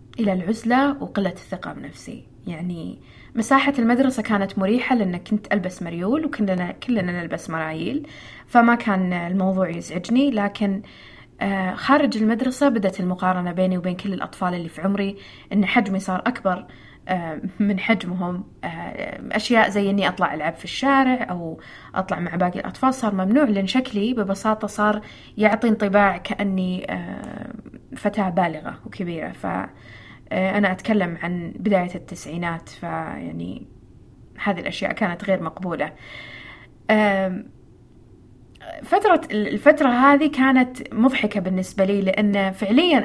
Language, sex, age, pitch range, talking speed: Arabic, female, 20-39, 175-225 Hz, 115 wpm